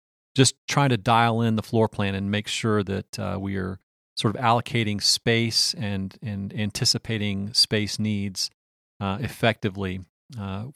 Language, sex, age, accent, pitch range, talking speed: English, male, 40-59, American, 95-115 Hz, 150 wpm